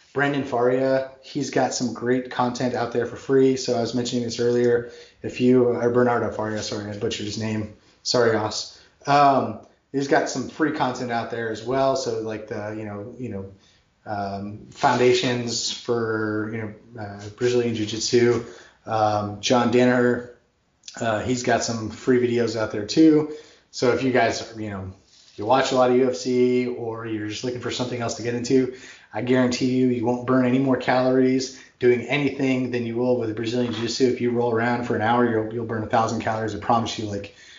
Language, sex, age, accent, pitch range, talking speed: English, male, 20-39, American, 110-125 Hz, 200 wpm